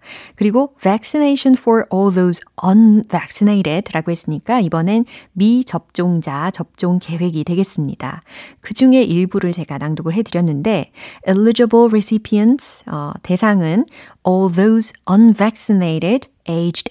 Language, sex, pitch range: Korean, female, 170-230 Hz